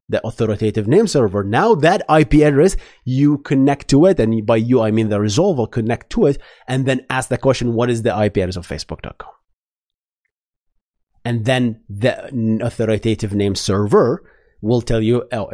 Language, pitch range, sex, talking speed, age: English, 110-150 Hz, male, 170 wpm, 30-49